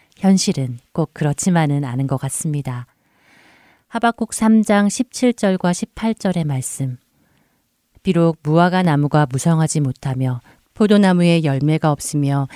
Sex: female